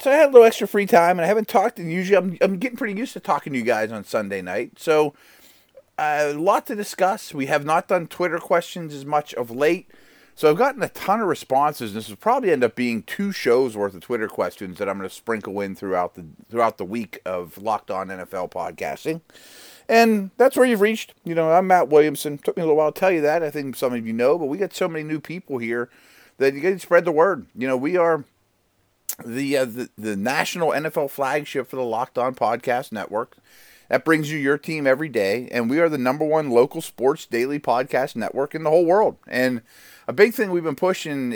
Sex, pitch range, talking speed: male, 125-175 Hz, 235 wpm